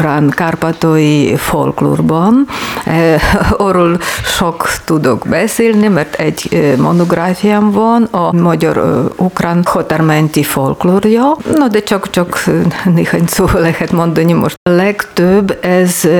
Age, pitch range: 50-69, 170-205 Hz